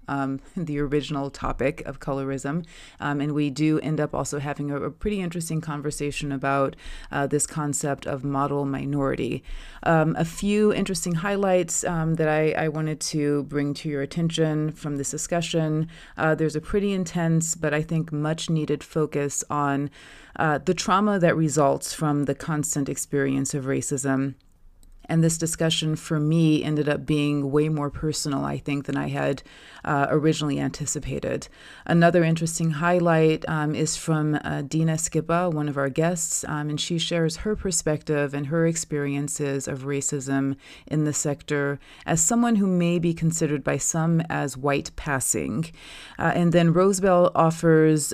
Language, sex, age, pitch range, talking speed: English, female, 30-49, 140-165 Hz, 160 wpm